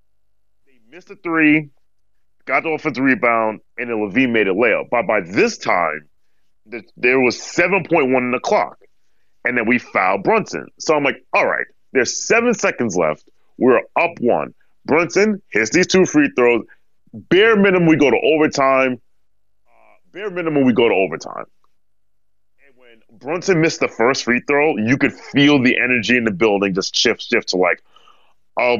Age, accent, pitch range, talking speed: 30-49, American, 115-155 Hz, 170 wpm